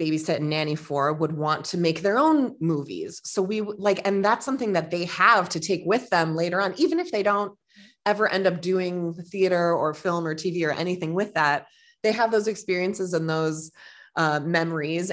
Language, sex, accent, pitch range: English, female, American, 160-195 Hz